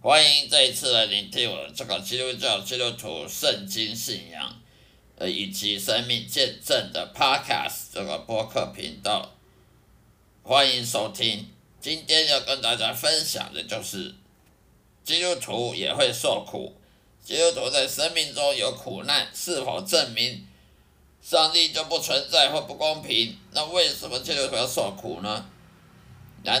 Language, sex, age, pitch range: Chinese, male, 50-69, 105-155 Hz